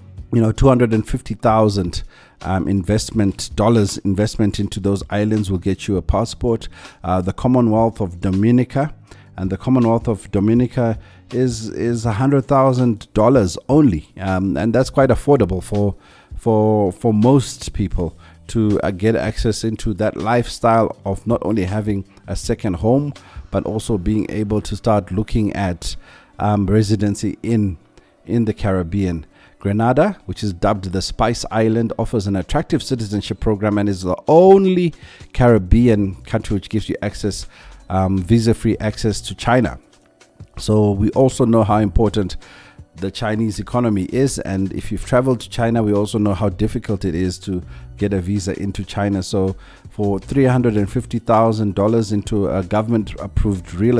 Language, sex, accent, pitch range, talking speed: English, male, South African, 95-115 Hz, 150 wpm